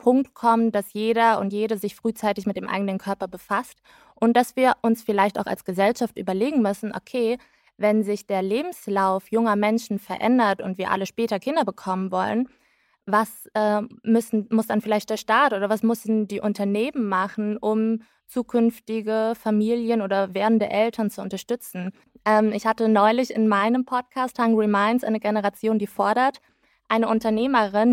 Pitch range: 210-235 Hz